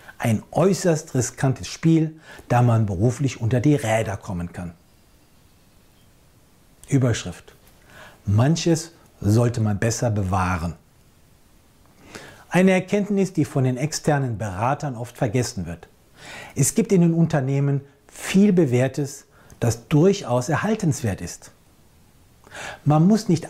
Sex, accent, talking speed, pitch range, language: male, German, 105 wpm, 115-160 Hz, German